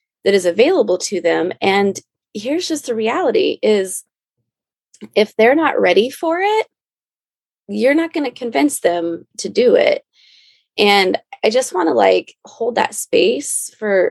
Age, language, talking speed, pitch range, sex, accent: 20-39, English, 155 wpm, 190-285 Hz, female, American